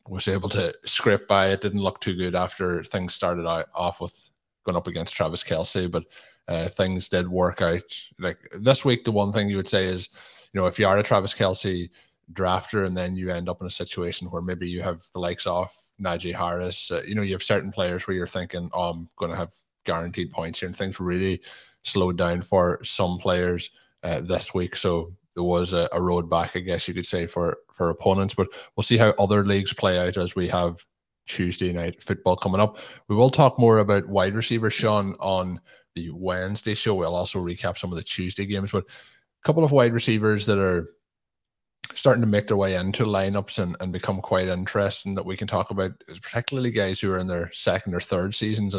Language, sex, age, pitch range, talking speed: English, male, 20-39, 90-100 Hz, 215 wpm